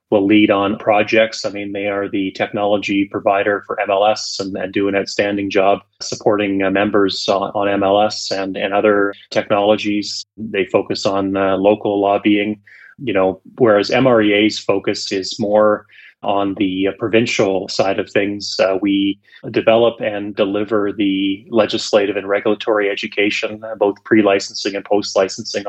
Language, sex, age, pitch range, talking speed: English, male, 30-49, 100-110 Hz, 150 wpm